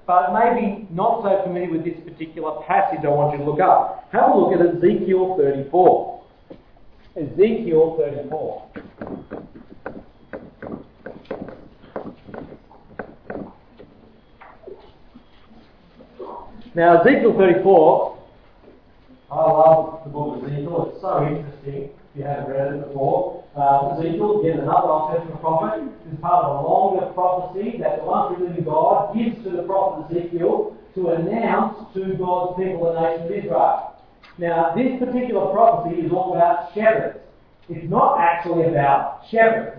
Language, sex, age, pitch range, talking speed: English, male, 50-69, 160-200 Hz, 130 wpm